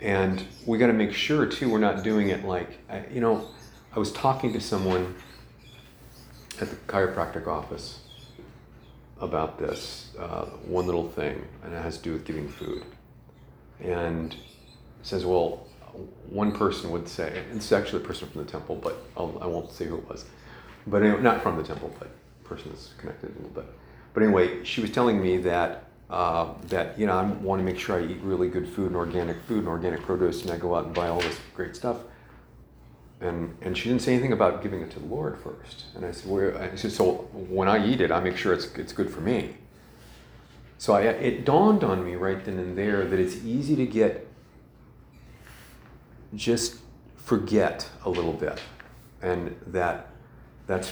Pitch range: 90-115 Hz